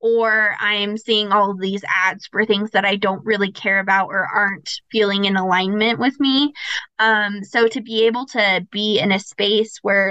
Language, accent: English, American